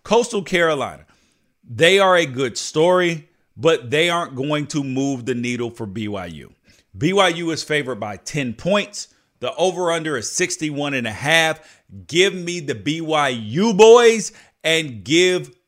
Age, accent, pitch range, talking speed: 40-59, American, 115-160 Hz, 130 wpm